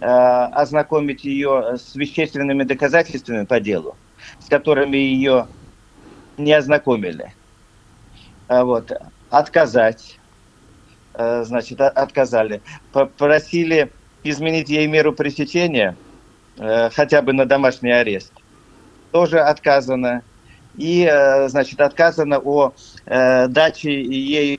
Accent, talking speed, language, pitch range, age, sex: native, 85 wpm, Russian, 125-155 Hz, 50-69, male